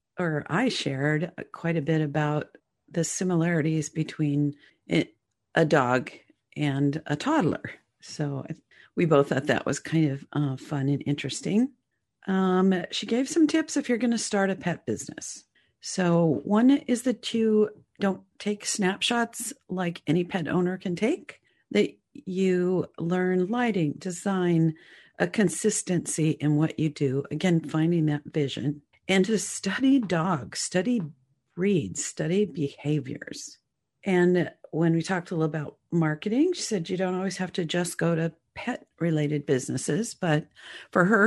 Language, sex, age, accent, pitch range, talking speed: English, female, 50-69, American, 155-205 Hz, 145 wpm